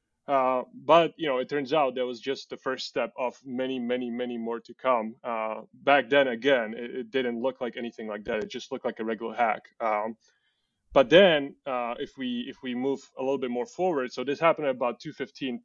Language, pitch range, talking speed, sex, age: English, 120-145 Hz, 225 wpm, male, 20-39